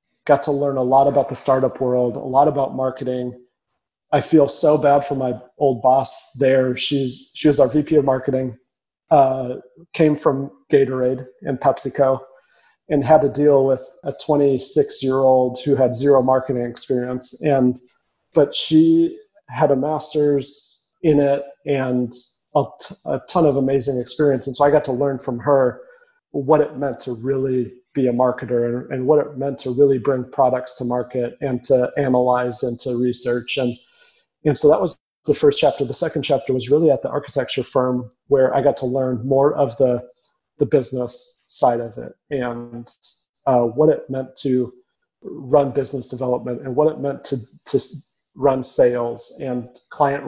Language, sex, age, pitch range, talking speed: English, male, 30-49, 125-145 Hz, 175 wpm